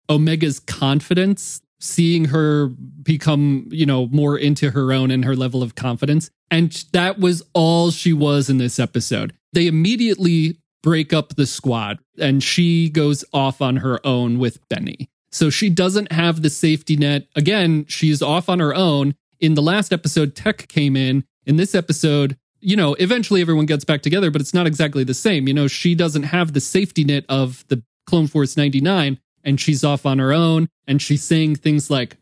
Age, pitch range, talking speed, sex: 30-49, 135-170 Hz, 185 wpm, male